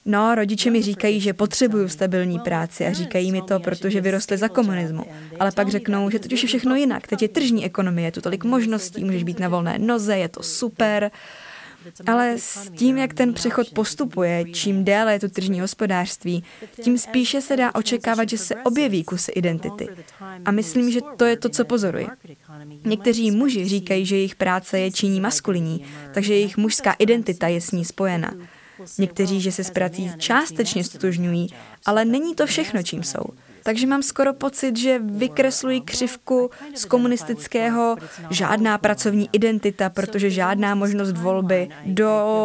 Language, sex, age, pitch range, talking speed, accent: Czech, female, 20-39, 190-240 Hz, 165 wpm, native